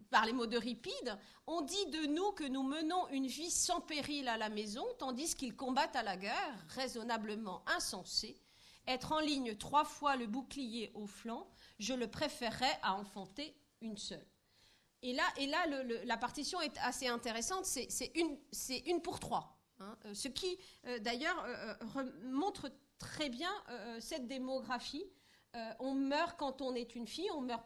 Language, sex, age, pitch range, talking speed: French, female, 40-59, 230-300 Hz, 180 wpm